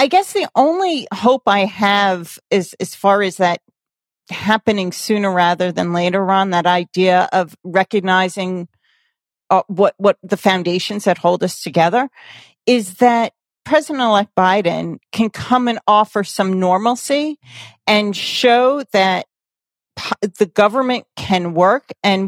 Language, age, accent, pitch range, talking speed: English, 40-59, American, 195-250 Hz, 135 wpm